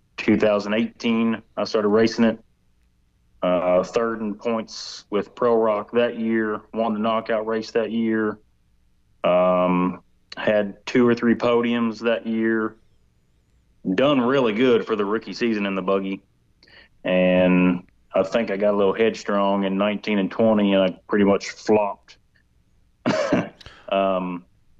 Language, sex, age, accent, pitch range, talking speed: English, male, 30-49, American, 95-115 Hz, 135 wpm